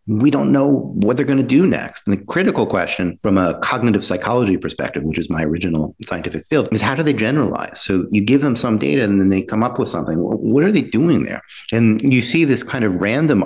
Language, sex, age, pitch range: English, male, 50-69, 95-125 Hz